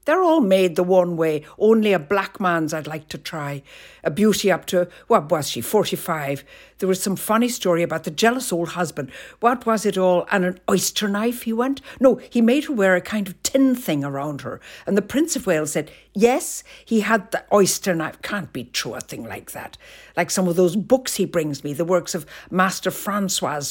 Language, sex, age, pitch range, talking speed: English, female, 60-79, 160-205 Hz, 220 wpm